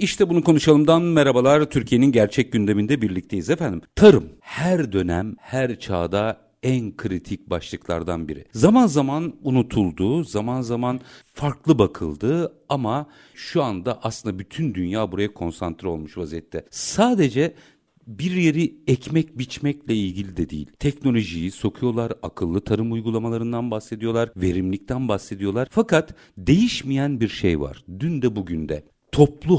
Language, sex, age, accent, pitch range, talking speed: Turkish, male, 50-69, native, 100-145 Hz, 125 wpm